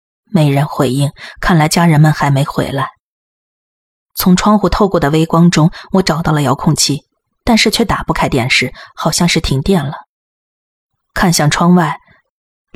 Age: 20-39